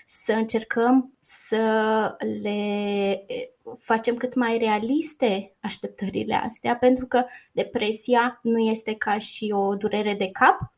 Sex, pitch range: female, 205-250 Hz